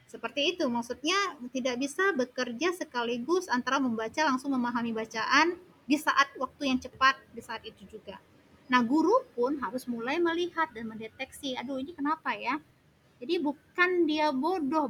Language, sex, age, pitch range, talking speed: Indonesian, female, 20-39, 230-295 Hz, 150 wpm